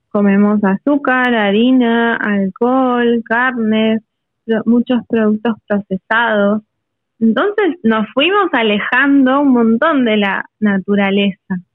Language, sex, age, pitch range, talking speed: Spanish, female, 20-39, 200-250 Hz, 85 wpm